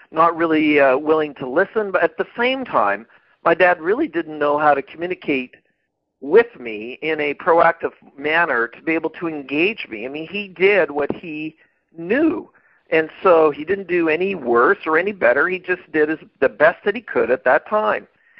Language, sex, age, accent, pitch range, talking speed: English, male, 50-69, American, 150-190 Hz, 195 wpm